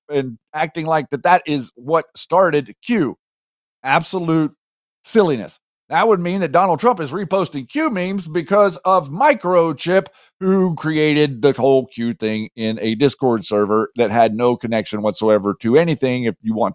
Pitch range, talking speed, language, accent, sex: 120-170 Hz, 160 wpm, English, American, male